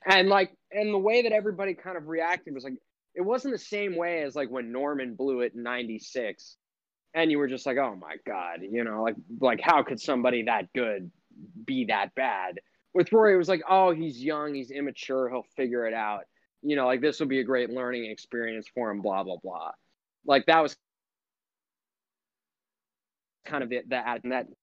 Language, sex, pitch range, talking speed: English, male, 120-170 Hz, 200 wpm